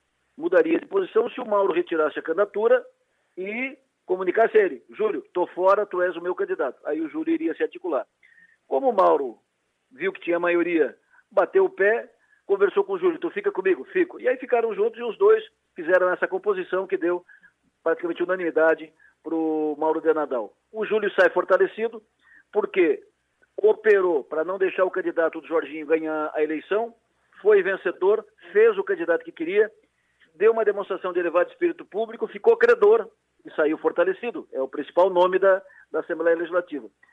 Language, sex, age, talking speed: Portuguese, male, 50-69, 175 wpm